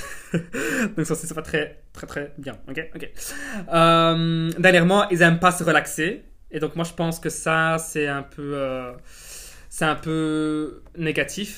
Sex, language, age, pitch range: male, French, 20-39, 155-185 Hz